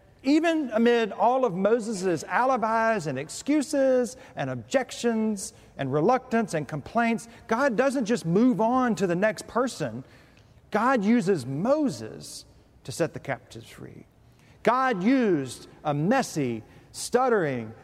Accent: American